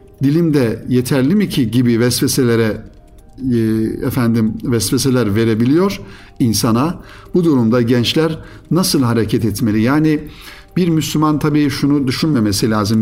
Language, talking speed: Turkish, 105 wpm